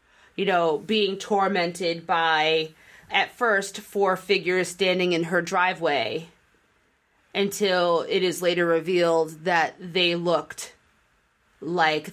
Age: 30-49